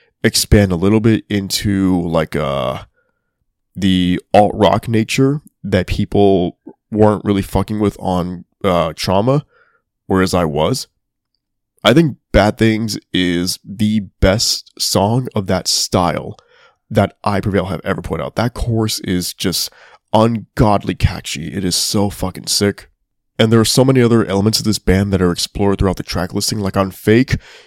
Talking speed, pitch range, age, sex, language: 155 wpm, 95-110 Hz, 20-39, male, English